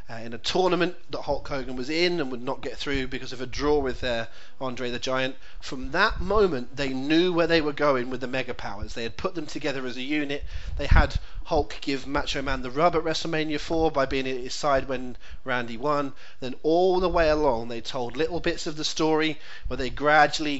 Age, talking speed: 30-49, 225 wpm